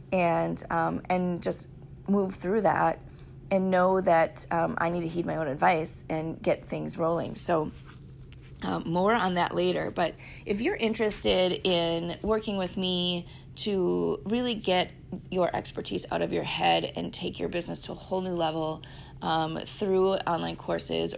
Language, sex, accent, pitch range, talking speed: English, female, American, 130-185 Hz, 165 wpm